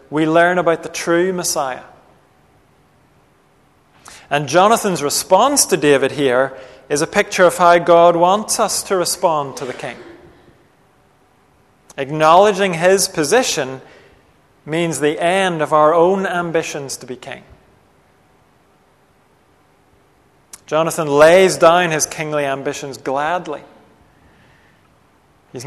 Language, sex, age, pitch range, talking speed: English, male, 40-59, 140-175 Hz, 110 wpm